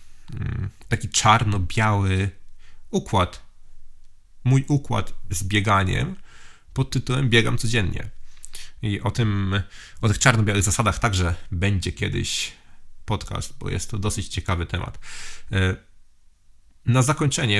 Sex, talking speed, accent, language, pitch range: male, 100 wpm, Polish, English, 90-115 Hz